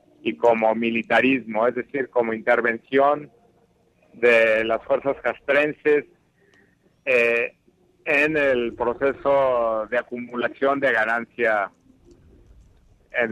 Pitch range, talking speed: 115-140 Hz, 90 wpm